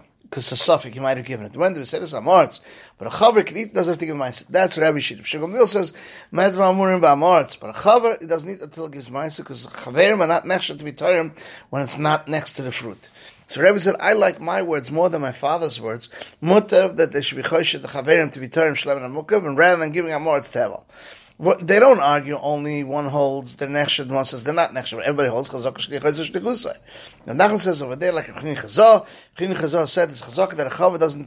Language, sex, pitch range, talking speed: English, male, 130-180 Hz, 245 wpm